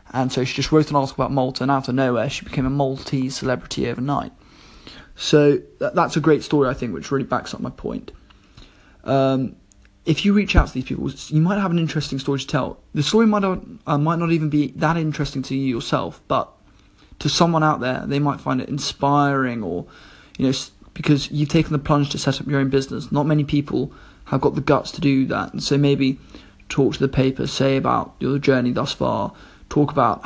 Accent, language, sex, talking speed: British, English, male, 220 wpm